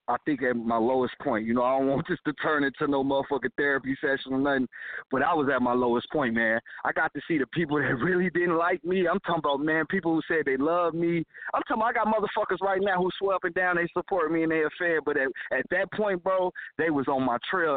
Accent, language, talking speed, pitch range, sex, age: American, English, 270 wpm, 150-210 Hz, male, 20-39